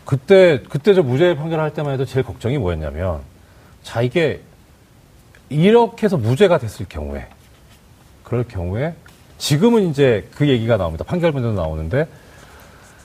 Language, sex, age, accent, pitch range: Korean, male, 40-59, native, 95-165 Hz